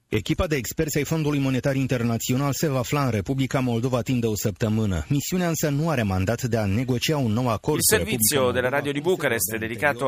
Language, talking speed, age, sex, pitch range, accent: Italian, 90 wpm, 30-49, male, 105-130 Hz, native